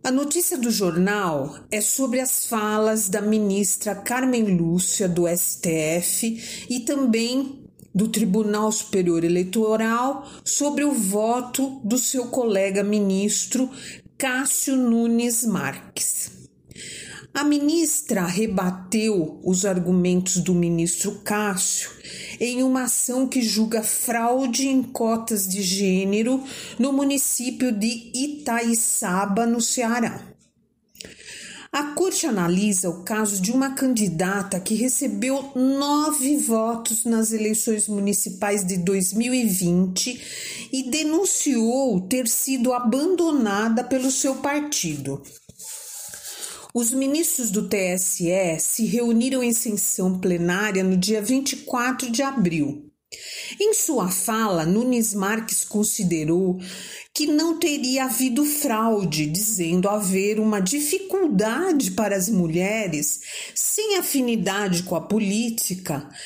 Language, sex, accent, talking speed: Portuguese, female, Brazilian, 105 wpm